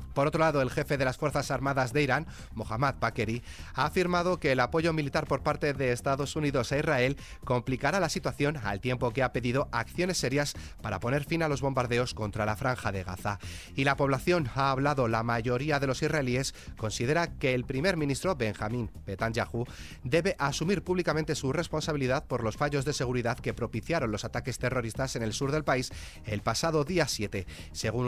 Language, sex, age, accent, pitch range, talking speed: Spanish, male, 30-49, Spanish, 115-150 Hz, 190 wpm